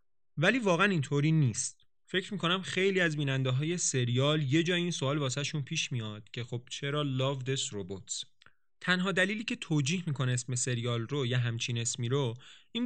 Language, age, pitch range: English, 30-49, 125-180 Hz